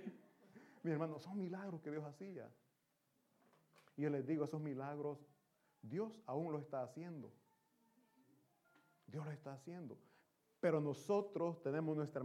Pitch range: 145-185 Hz